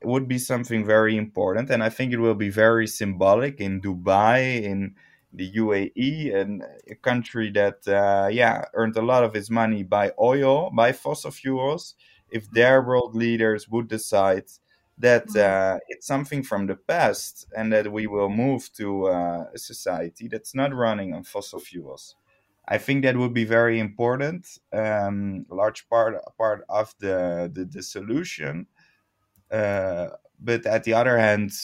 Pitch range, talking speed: 100-120 Hz, 160 wpm